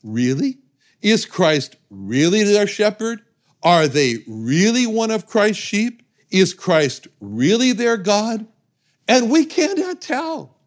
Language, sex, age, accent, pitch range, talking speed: English, male, 60-79, American, 130-215 Hz, 125 wpm